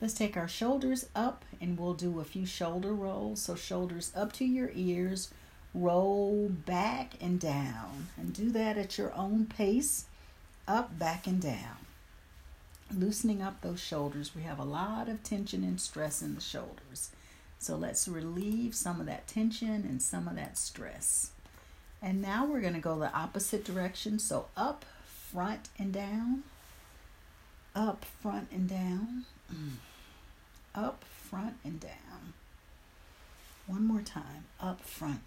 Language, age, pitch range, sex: English, 50-69, 150-215 Hz, female